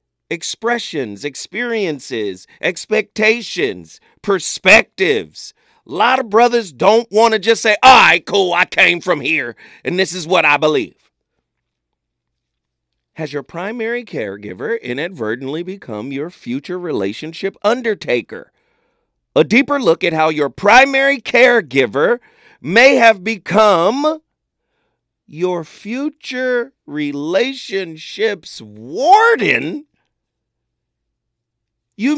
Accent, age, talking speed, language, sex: American, 40-59, 95 wpm, English, male